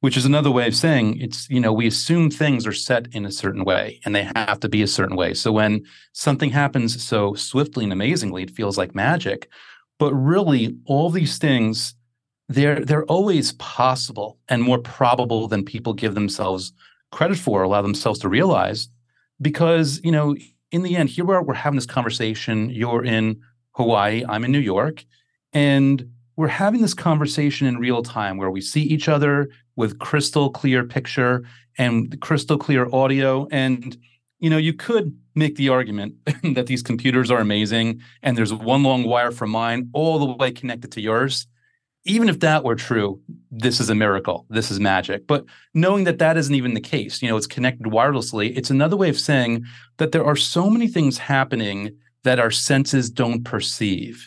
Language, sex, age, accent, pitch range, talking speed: English, male, 30-49, American, 115-145 Hz, 190 wpm